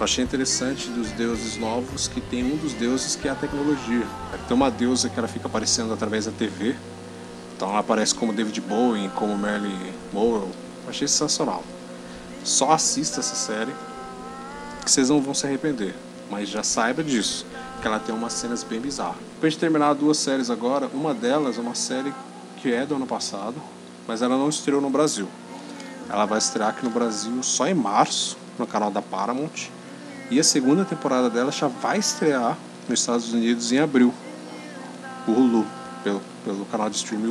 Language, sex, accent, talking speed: Portuguese, male, Brazilian, 185 wpm